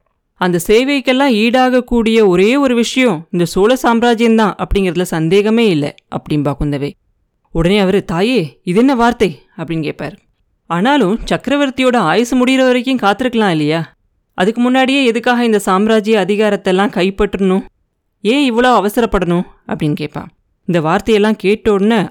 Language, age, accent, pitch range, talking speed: Tamil, 30-49, native, 175-235 Hz, 120 wpm